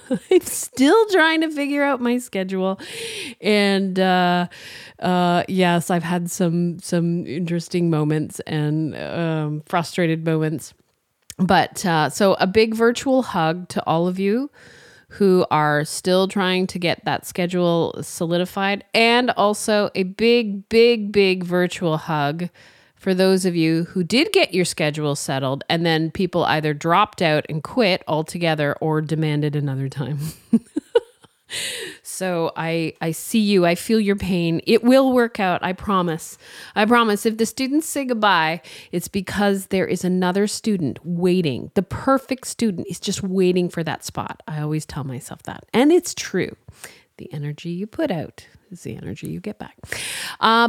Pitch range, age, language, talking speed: 165-225 Hz, 30-49, English, 155 wpm